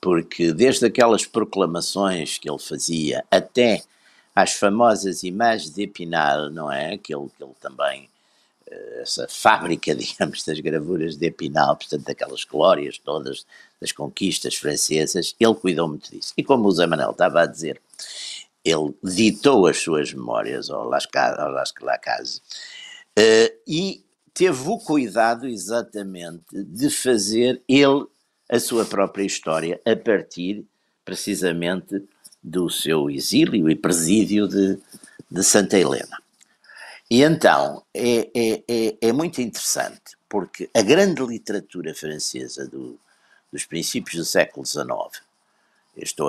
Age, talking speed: 60-79, 130 wpm